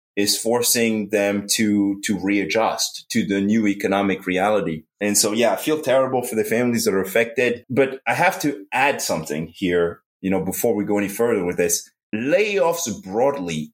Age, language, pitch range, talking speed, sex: 30-49, English, 100-130 Hz, 180 wpm, male